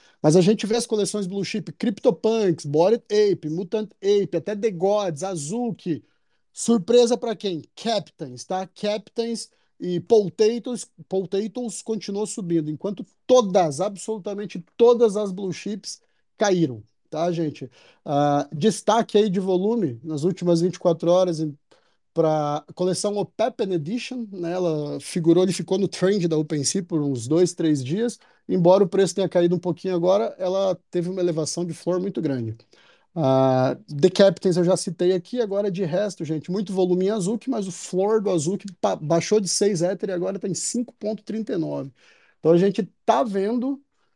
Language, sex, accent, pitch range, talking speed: Portuguese, male, Brazilian, 170-215 Hz, 160 wpm